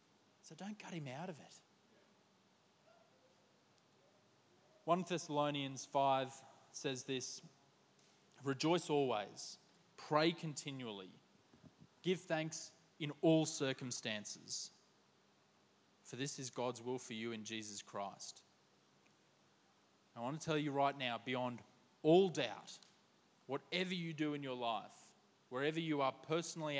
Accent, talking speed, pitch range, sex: Australian, 115 wpm, 125-165 Hz, male